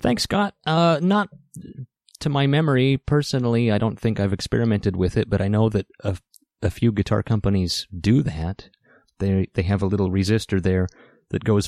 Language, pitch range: English, 90-115 Hz